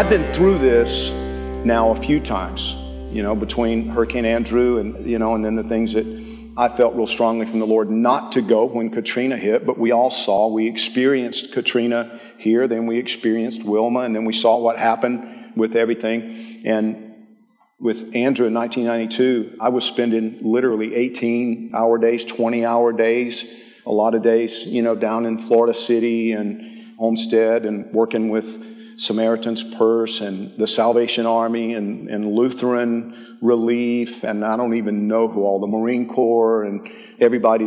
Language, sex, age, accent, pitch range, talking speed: English, male, 50-69, American, 110-120 Hz, 170 wpm